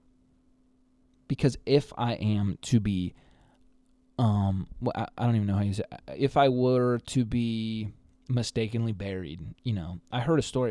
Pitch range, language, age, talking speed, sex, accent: 100-130 Hz, English, 20-39, 170 wpm, male, American